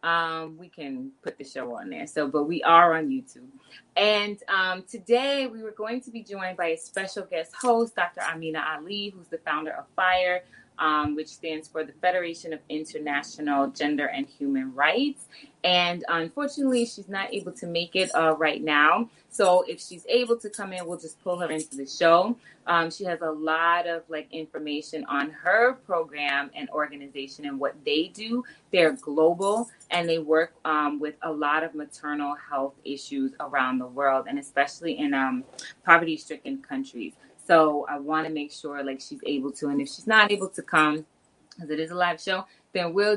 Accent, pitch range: American, 150-205 Hz